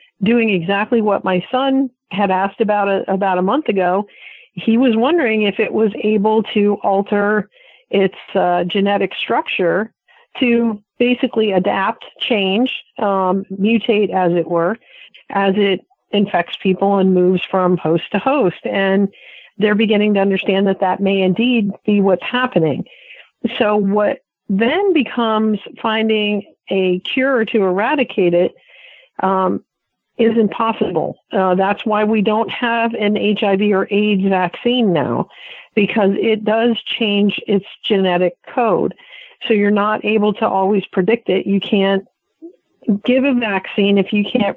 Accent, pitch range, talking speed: American, 195-230 Hz, 140 wpm